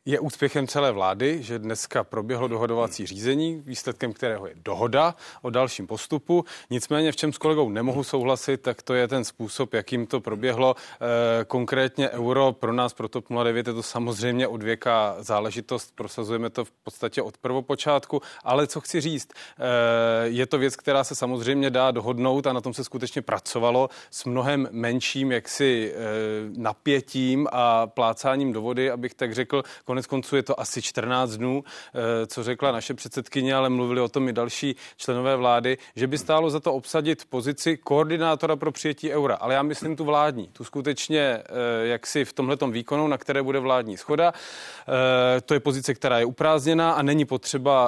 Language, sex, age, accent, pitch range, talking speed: Czech, male, 30-49, native, 120-140 Hz, 165 wpm